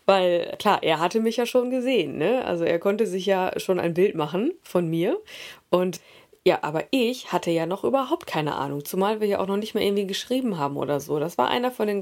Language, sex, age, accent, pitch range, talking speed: German, female, 20-39, German, 165-210 Hz, 235 wpm